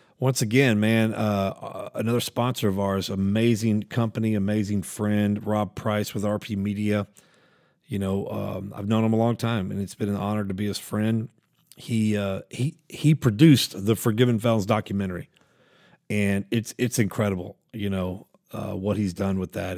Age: 40-59